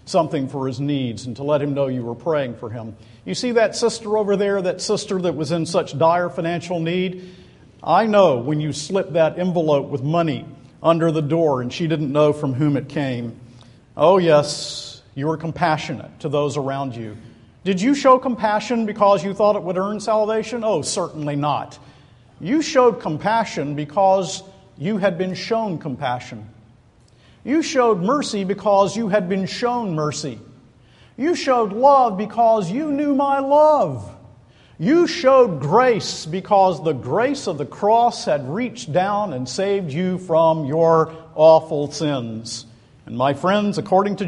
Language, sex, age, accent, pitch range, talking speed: English, male, 50-69, American, 135-205 Hz, 165 wpm